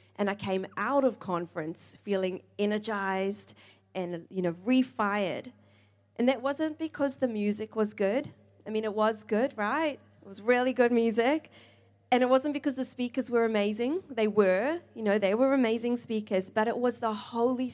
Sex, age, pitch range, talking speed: female, 30-49, 185-245 Hz, 175 wpm